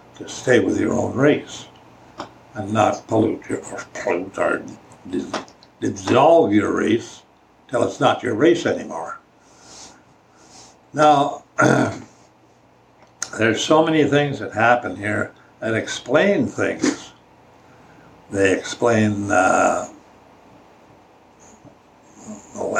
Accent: American